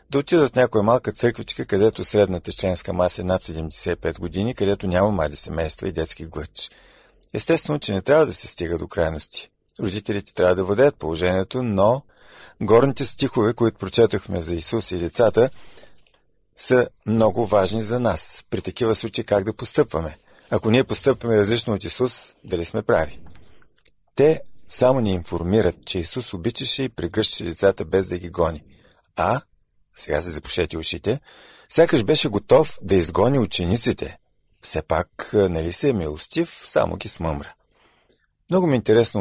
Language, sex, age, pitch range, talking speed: Bulgarian, male, 50-69, 90-115 Hz, 155 wpm